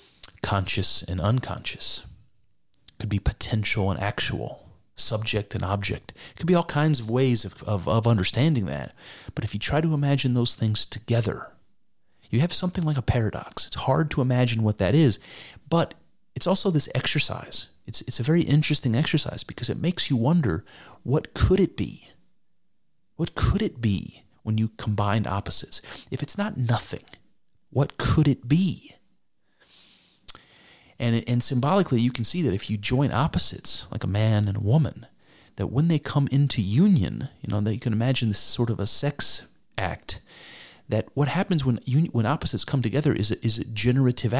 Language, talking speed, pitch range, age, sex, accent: English, 175 wpm, 105-145 Hz, 40-59, male, American